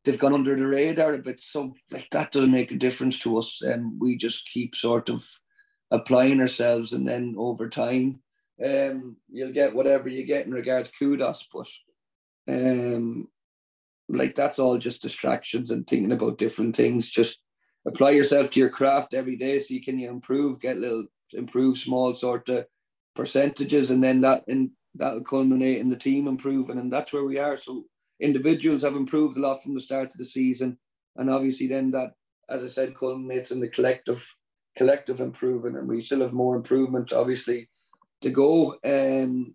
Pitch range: 125-140 Hz